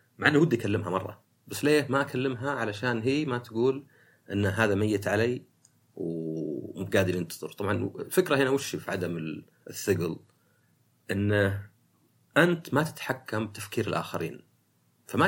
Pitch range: 95-125 Hz